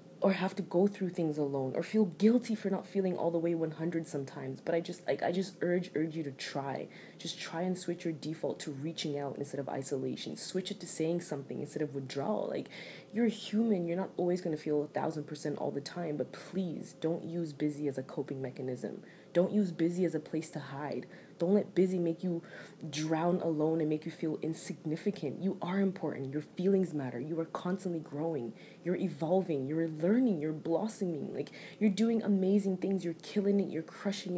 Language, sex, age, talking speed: English, female, 20-39, 210 wpm